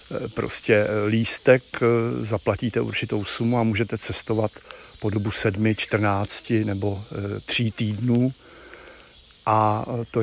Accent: native